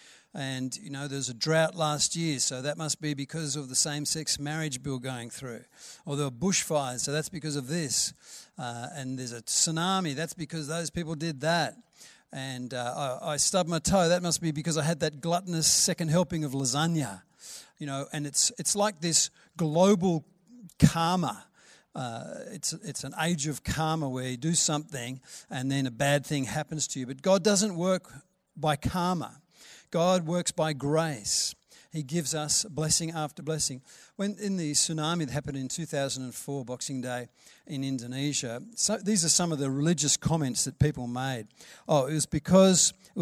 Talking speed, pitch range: 185 wpm, 140-170 Hz